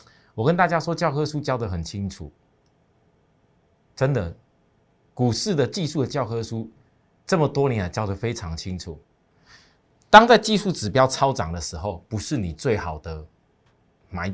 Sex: male